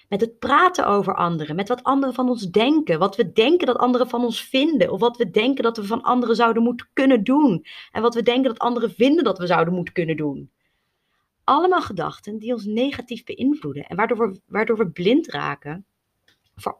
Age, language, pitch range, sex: 30-49, Dutch, 185-245 Hz, female